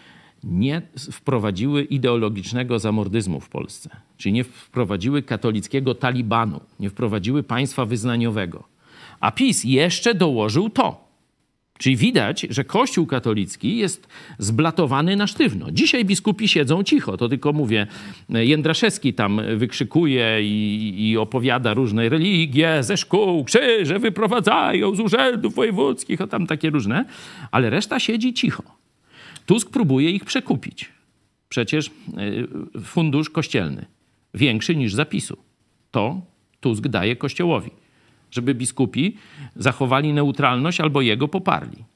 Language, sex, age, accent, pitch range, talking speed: Polish, male, 50-69, native, 125-205 Hz, 115 wpm